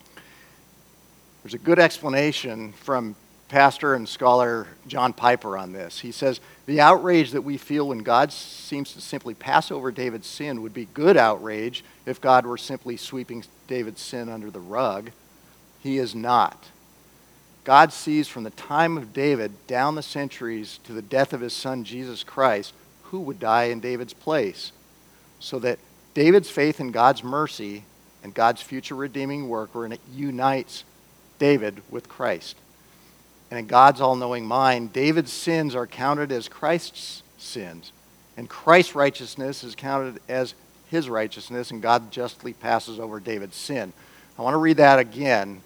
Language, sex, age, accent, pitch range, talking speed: English, male, 50-69, American, 120-150 Hz, 160 wpm